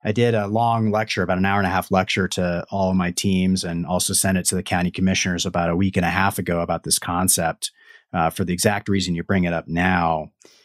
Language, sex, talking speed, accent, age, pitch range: English, male, 255 wpm, American, 30-49, 90-110 Hz